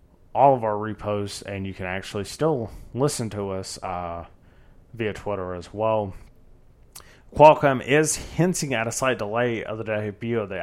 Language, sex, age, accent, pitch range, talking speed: English, male, 30-49, American, 100-120 Hz, 165 wpm